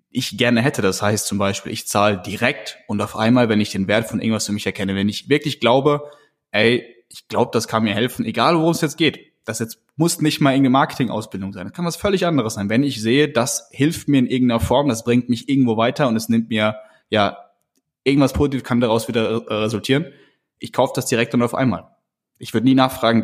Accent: German